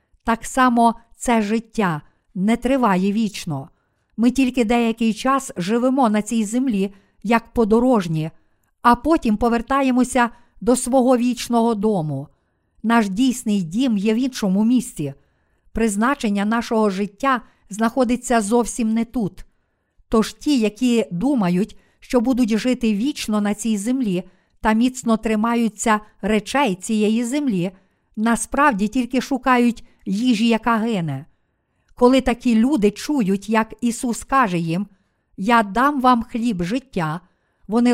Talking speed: 120 wpm